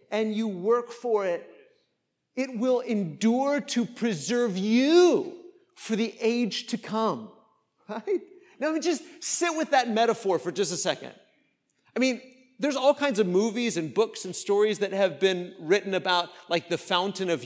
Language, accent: English, American